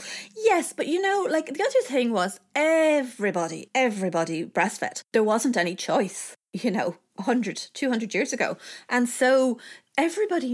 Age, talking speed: 30-49, 140 wpm